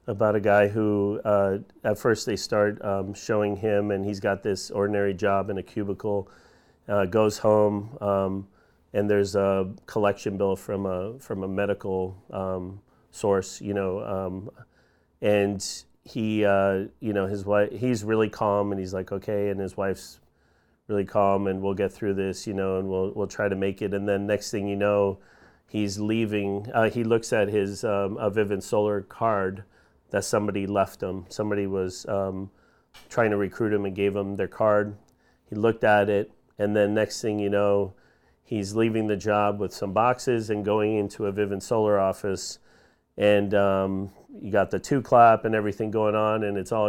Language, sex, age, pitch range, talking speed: English, male, 40-59, 100-105 Hz, 185 wpm